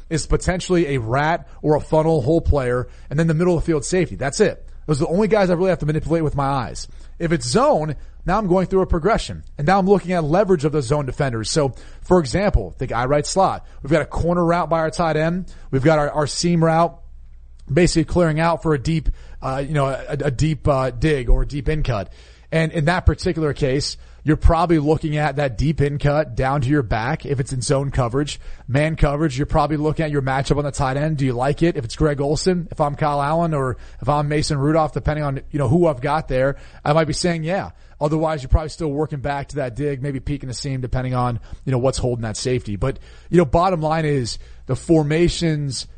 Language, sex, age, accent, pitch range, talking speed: English, male, 30-49, American, 130-160 Hz, 240 wpm